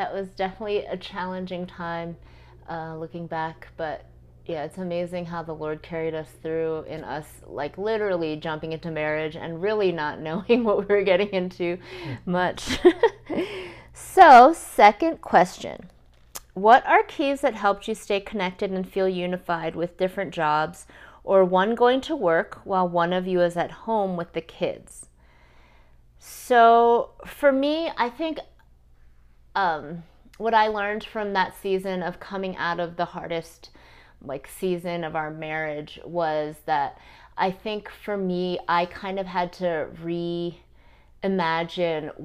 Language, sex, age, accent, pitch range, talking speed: English, female, 30-49, American, 160-200 Hz, 145 wpm